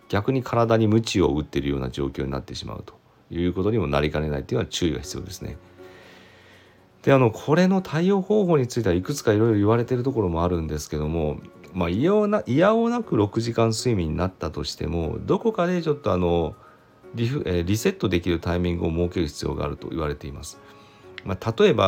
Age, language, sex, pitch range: 40-59, Japanese, male, 85-130 Hz